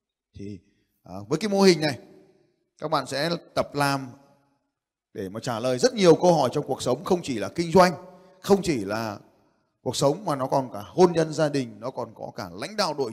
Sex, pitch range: male, 130-185 Hz